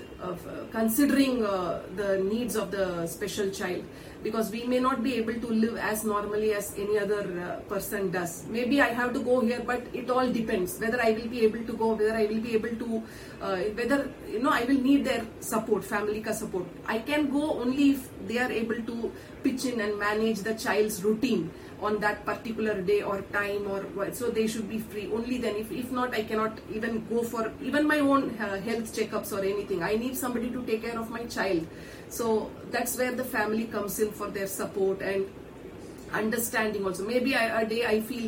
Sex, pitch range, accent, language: female, 210-245 Hz, native, Hindi